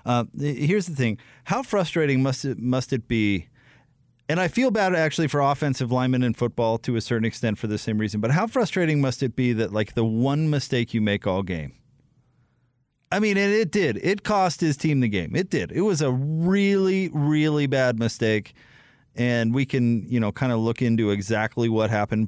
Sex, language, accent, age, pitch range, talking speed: male, English, American, 30-49, 115-165 Hz, 205 wpm